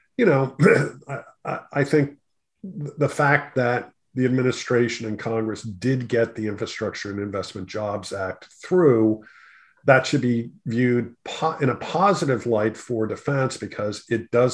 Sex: male